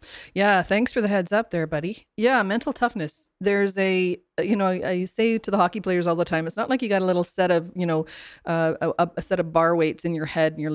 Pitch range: 160-190 Hz